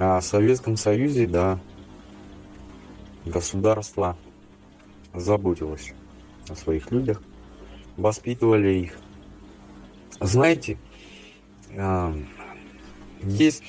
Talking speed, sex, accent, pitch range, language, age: 55 wpm, male, native, 85-105 Hz, Russian, 30-49